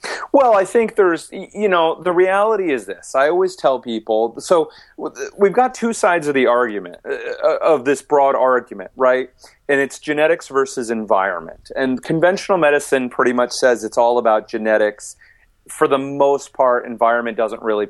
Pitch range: 120-165 Hz